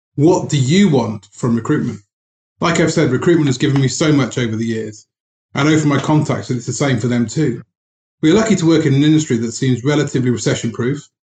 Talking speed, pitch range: 220 wpm, 125-155 Hz